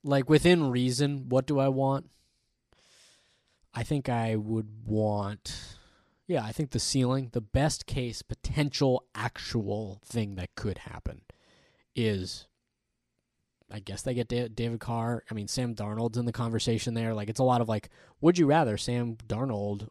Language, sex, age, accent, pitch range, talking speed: English, male, 20-39, American, 105-130 Hz, 155 wpm